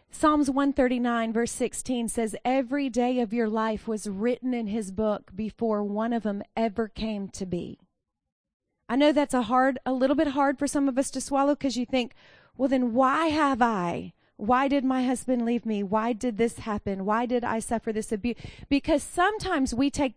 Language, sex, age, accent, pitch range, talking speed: English, female, 30-49, American, 220-275 Hz, 195 wpm